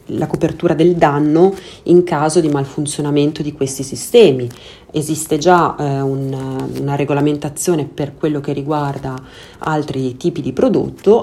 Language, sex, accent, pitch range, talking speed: Italian, female, native, 140-165 Hz, 135 wpm